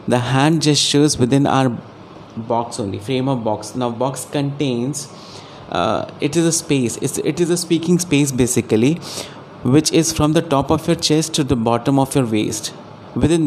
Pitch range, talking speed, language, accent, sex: 120-150 Hz, 185 wpm, Hindi, native, male